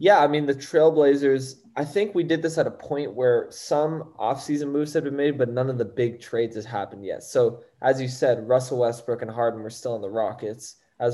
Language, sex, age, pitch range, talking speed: English, male, 20-39, 110-135 Hz, 230 wpm